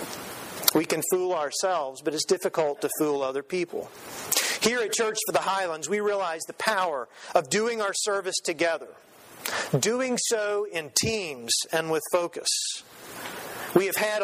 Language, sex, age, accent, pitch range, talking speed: English, male, 40-59, American, 165-205 Hz, 150 wpm